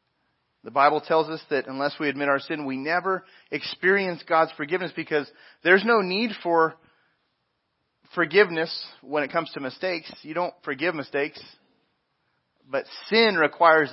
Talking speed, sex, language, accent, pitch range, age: 140 wpm, male, English, American, 125-170 Hz, 30-49